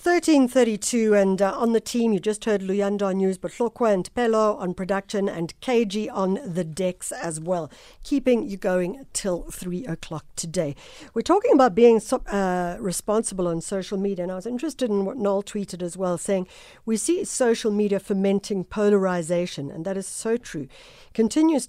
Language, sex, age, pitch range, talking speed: English, female, 60-79, 175-230 Hz, 175 wpm